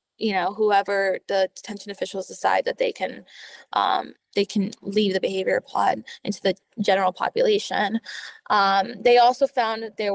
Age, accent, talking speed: 10-29, American, 160 wpm